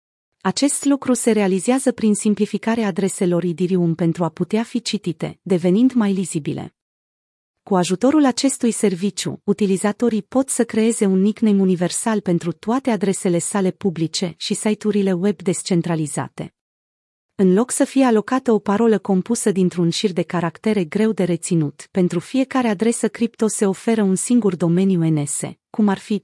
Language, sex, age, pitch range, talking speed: Romanian, female, 30-49, 180-225 Hz, 145 wpm